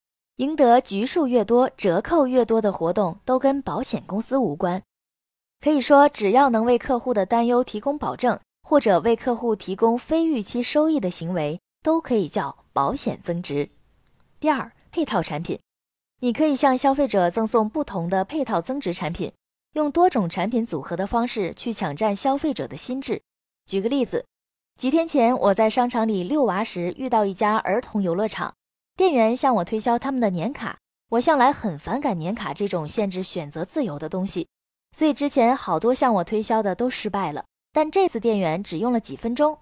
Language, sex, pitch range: Chinese, female, 195-270 Hz